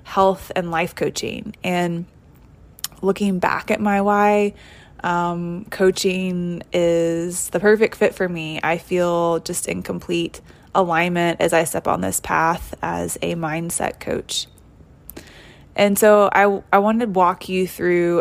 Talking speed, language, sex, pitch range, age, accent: 140 wpm, English, female, 170-190 Hz, 20-39, American